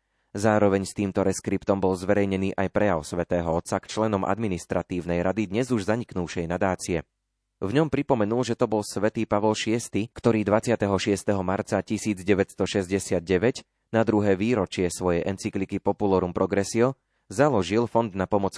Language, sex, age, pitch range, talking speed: Slovak, male, 30-49, 90-110 Hz, 135 wpm